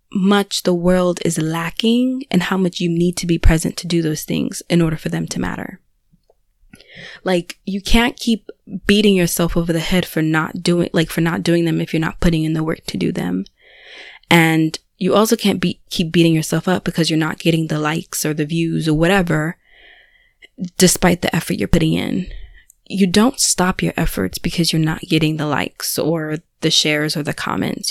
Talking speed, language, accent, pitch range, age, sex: 200 wpm, English, American, 165-210 Hz, 20-39, female